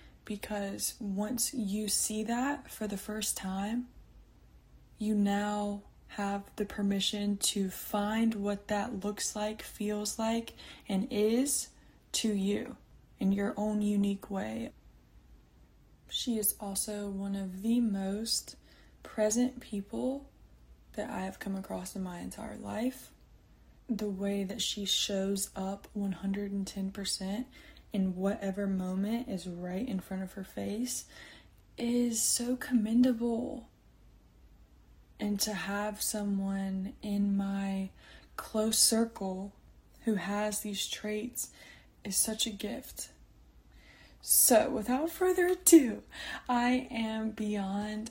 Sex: female